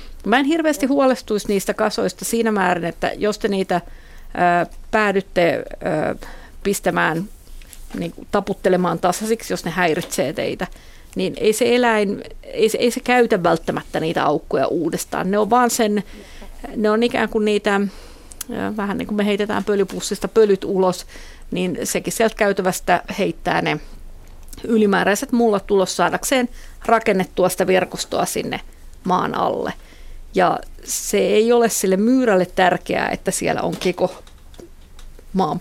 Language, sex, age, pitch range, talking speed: Finnish, female, 50-69, 185-220 Hz, 140 wpm